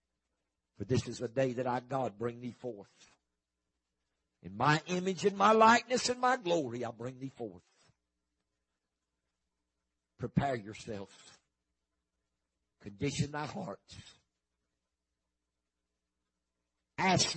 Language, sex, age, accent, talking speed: English, male, 60-79, American, 105 wpm